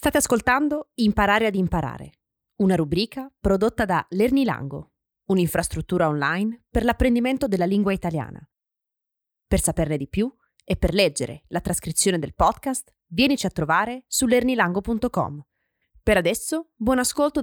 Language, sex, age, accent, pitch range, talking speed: Italian, female, 20-39, native, 175-265 Hz, 125 wpm